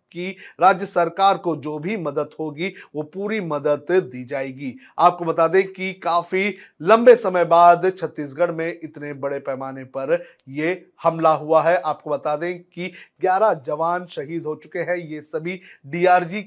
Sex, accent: male, native